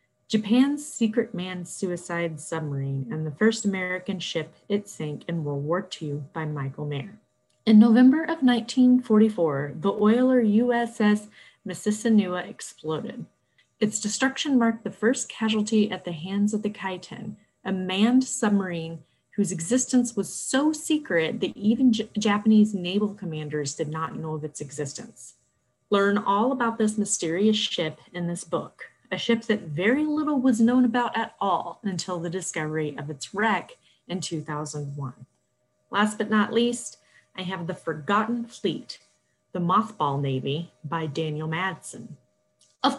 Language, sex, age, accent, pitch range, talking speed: English, female, 30-49, American, 165-230 Hz, 140 wpm